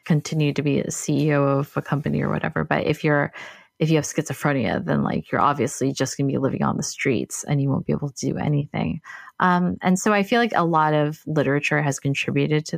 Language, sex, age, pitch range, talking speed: English, female, 20-39, 140-165 Hz, 235 wpm